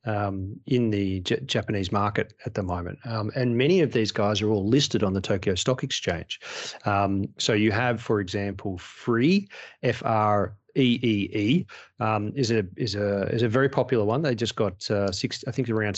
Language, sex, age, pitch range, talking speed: English, male, 30-49, 100-120 Hz, 190 wpm